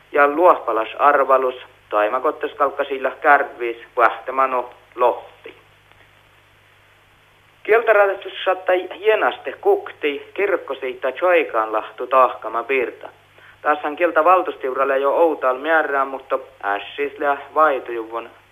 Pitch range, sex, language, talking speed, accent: 120-160 Hz, male, Finnish, 80 wpm, native